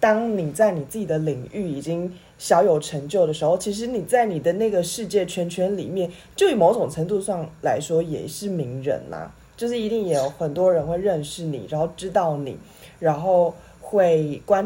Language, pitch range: Chinese, 160-210 Hz